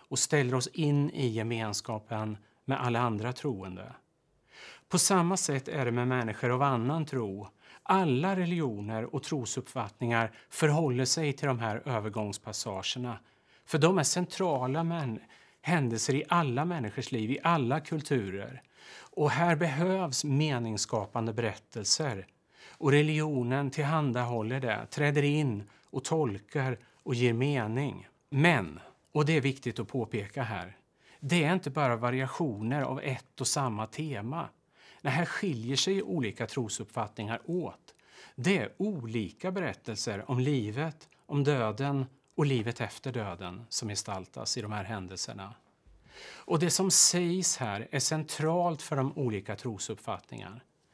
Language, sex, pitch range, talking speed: Swedish, male, 115-150 Hz, 130 wpm